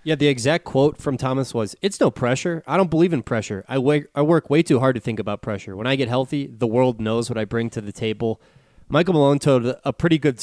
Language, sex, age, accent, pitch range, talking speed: English, male, 20-39, American, 120-140 Hz, 255 wpm